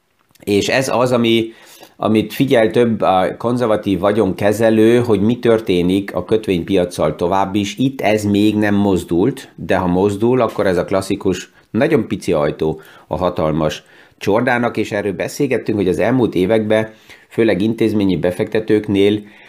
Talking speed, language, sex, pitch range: 135 wpm, Hungarian, male, 95-115 Hz